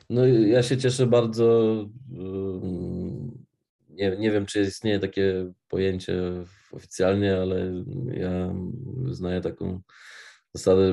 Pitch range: 90-105 Hz